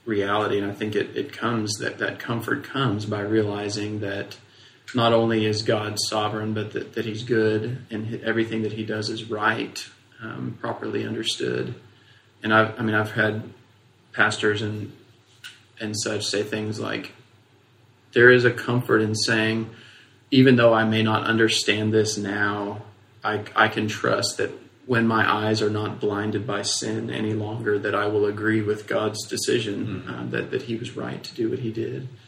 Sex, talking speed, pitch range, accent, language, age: male, 175 wpm, 105-115 Hz, American, English, 30-49